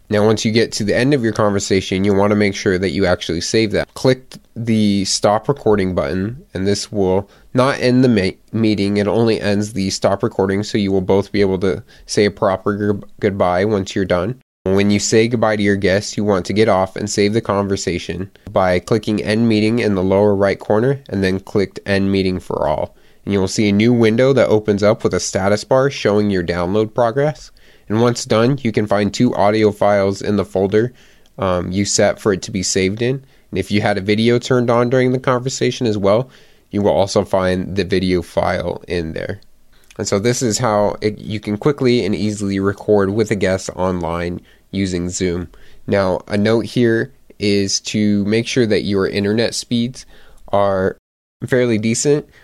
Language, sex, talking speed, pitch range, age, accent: English, male, 205 wpm, 95-115 Hz, 20-39, American